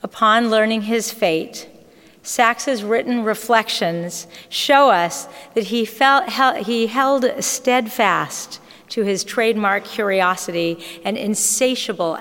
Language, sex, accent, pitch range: English, female, American, 170-230 Hz